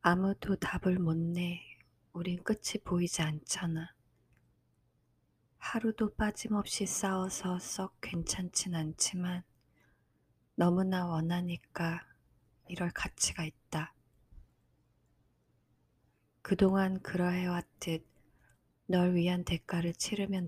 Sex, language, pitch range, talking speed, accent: female, English, 165-190 Hz, 70 wpm, Korean